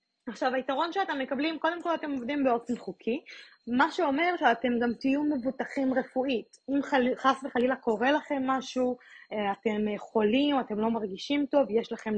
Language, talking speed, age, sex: Hebrew, 160 wpm, 20-39, female